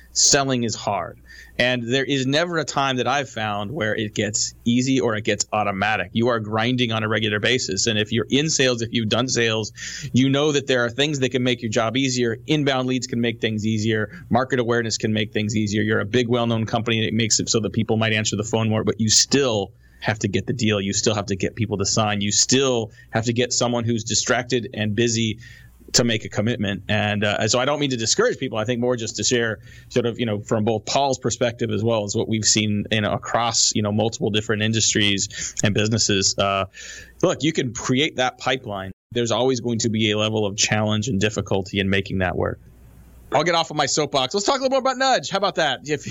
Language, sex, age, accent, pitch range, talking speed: English, male, 30-49, American, 105-130 Hz, 240 wpm